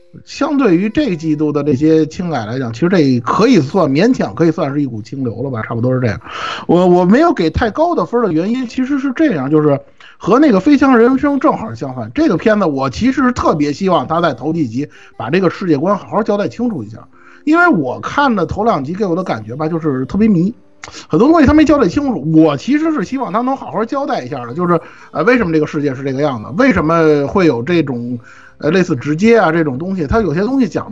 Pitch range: 150-250 Hz